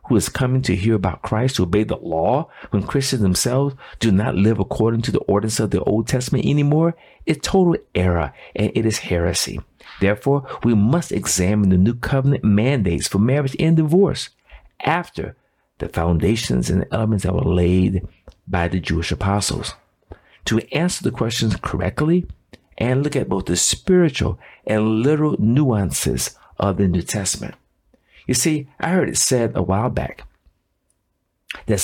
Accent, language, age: American, English, 50-69